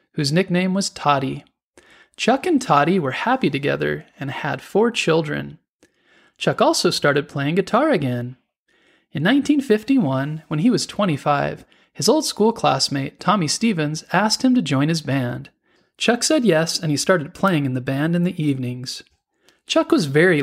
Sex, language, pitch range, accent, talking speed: male, English, 140-210 Hz, American, 160 wpm